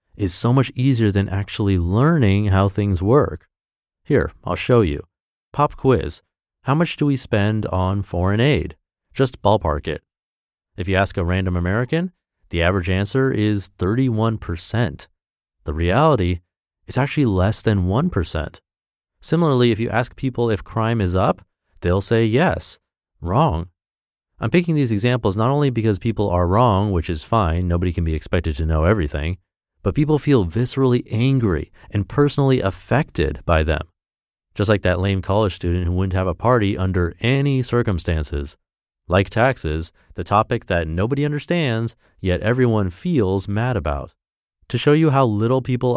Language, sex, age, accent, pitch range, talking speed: English, male, 30-49, American, 90-120 Hz, 155 wpm